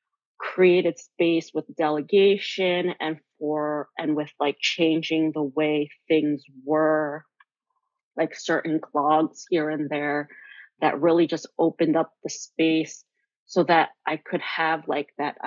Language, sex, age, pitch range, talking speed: English, female, 30-49, 150-185 Hz, 130 wpm